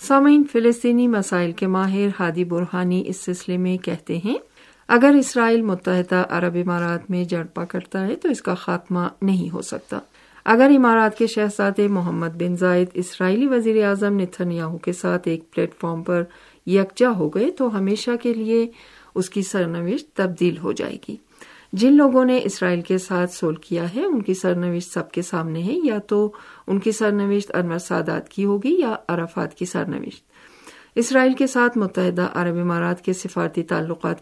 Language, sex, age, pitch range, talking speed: Urdu, female, 50-69, 175-220 Hz, 170 wpm